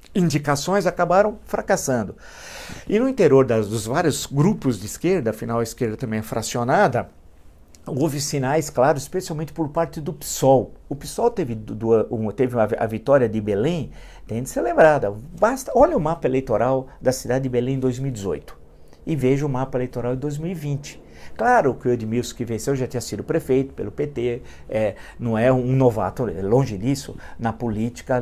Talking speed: 165 wpm